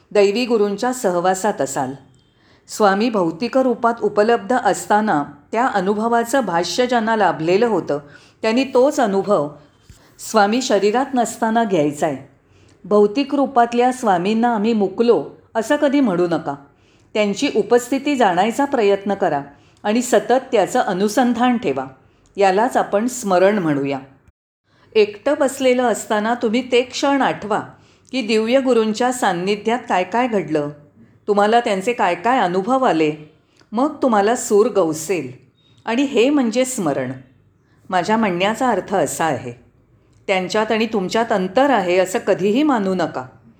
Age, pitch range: 40-59, 155-245 Hz